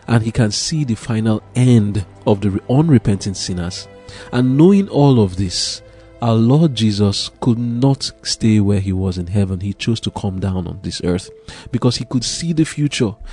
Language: English